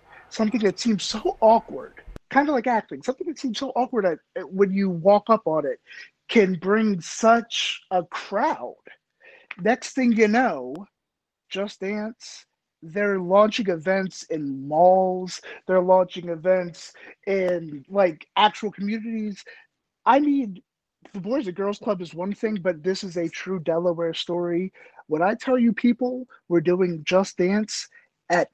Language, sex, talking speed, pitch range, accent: English, male, 150 wpm, 175-220 Hz, American